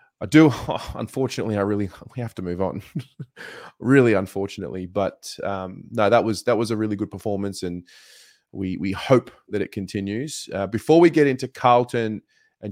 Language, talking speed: English, 175 wpm